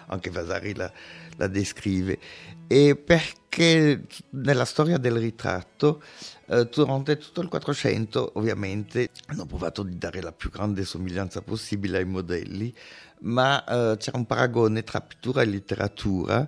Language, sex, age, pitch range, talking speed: Italian, male, 60-79, 95-130 Hz, 135 wpm